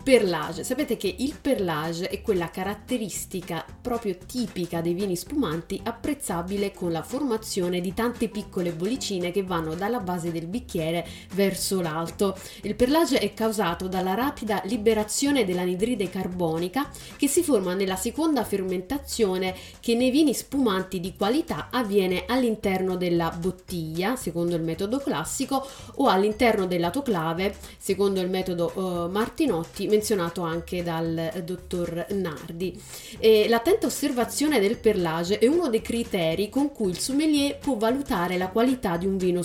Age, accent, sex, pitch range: 30-49, native, female, 180-235 Hz